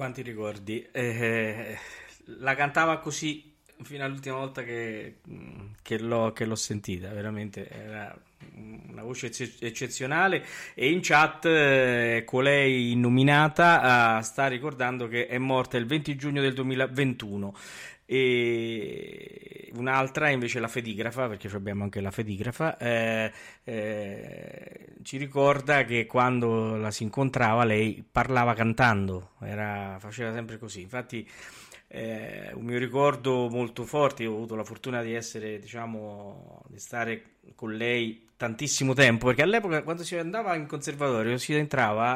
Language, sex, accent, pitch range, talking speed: Italian, male, native, 110-140 Hz, 130 wpm